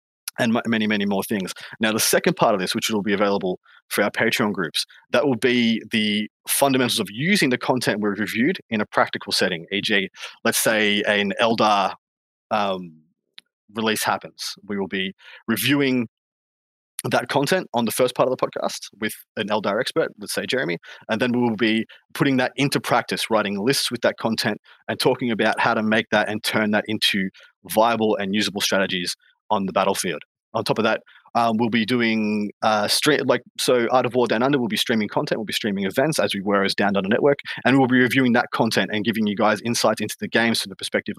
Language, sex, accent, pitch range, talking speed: English, male, Australian, 100-125 Hz, 205 wpm